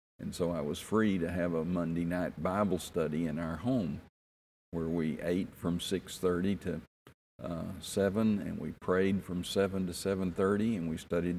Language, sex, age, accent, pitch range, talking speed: English, male, 50-69, American, 85-95 Hz, 175 wpm